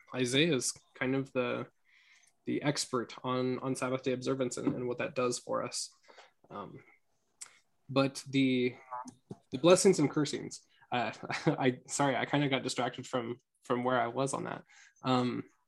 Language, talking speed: English, 160 wpm